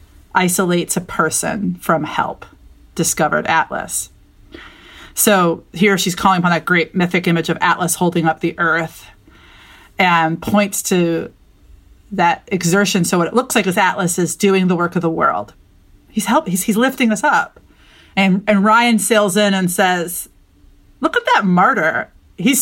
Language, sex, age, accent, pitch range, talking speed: English, female, 30-49, American, 170-200 Hz, 160 wpm